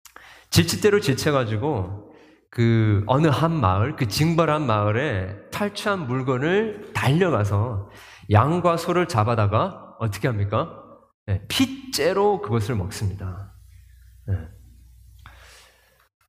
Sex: male